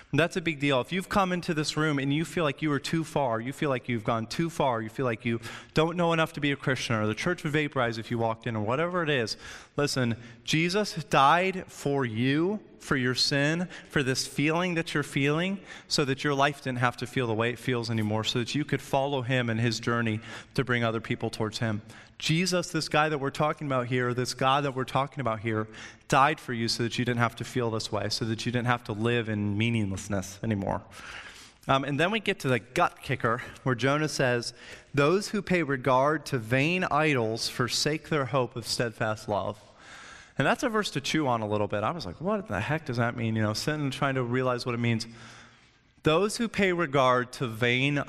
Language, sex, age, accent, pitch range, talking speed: English, male, 30-49, American, 115-150 Hz, 235 wpm